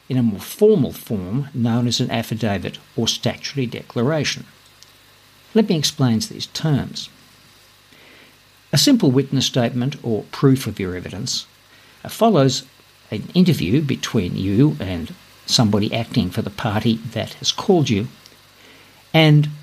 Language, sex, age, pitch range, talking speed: English, male, 60-79, 115-135 Hz, 130 wpm